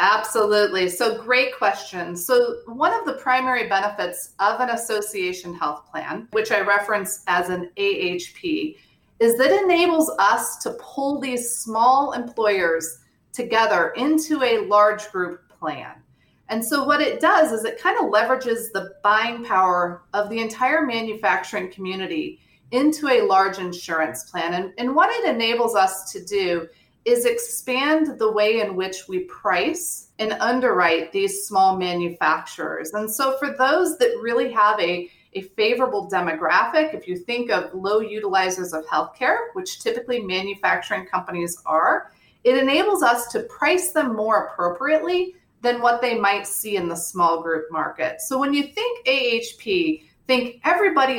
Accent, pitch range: American, 185-265 Hz